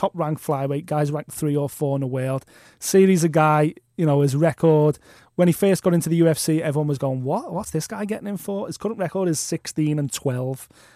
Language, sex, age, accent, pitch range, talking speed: English, male, 20-39, British, 145-170 Hz, 225 wpm